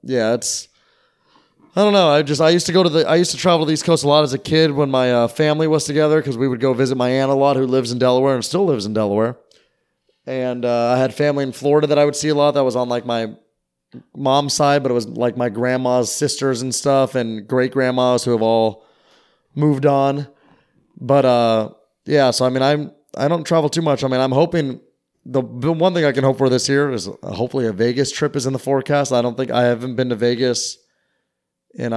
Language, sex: English, male